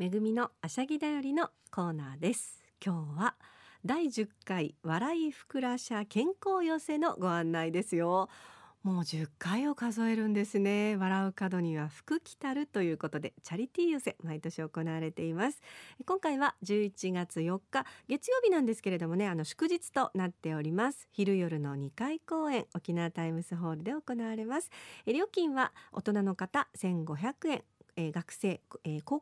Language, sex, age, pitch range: Japanese, female, 50-69, 160-255 Hz